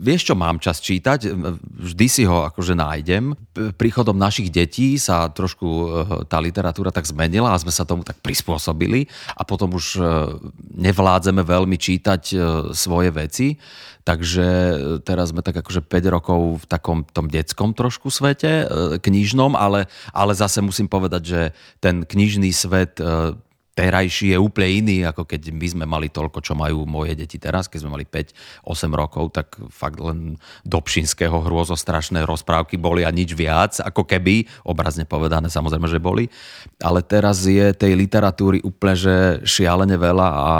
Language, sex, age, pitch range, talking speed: Slovak, male, 30-49, 80-100 Hz, 155 wpm